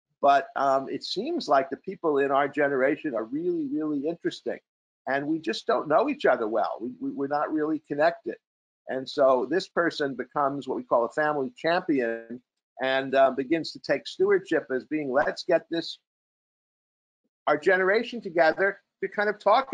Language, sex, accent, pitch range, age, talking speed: English, male, American, 135-190 Hz, 50-69, 165 wpm